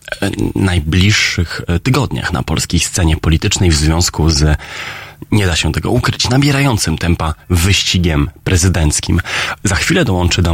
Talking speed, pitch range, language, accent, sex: 125 wpm, 80-105 Hz, Polish, native, male